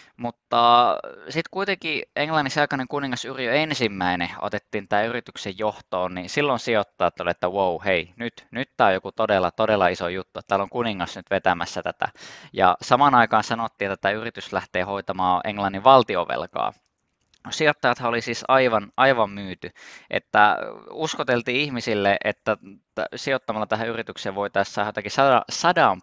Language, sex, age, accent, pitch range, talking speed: Finnish, male, 20-39, native, 100-130 Hz, 140 wpm